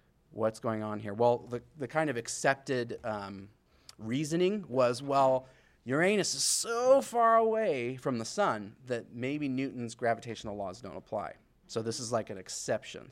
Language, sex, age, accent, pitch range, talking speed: English, male, 30-49, American, 110-140 Hz, 160 wpm